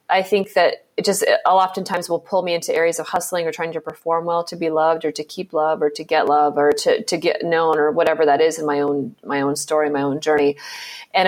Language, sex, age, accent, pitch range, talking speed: English, female, 30-49, American, 165-200 Hz, 260 wpm